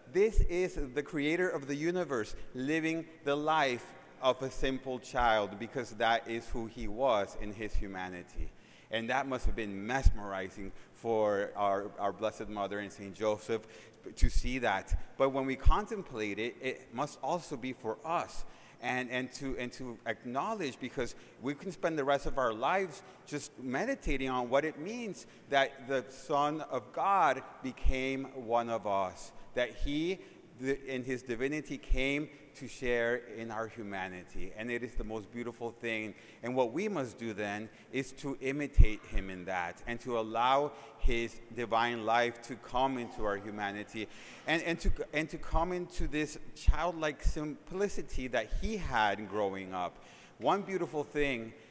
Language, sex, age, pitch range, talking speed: English, male, 30-49, 110-145 Hz, 160 wpm